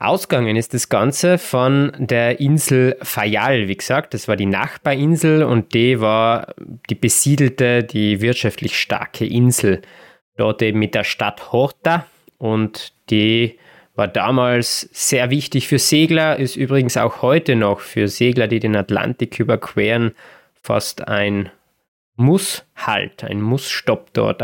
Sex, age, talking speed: male, 20-39, 135 wpm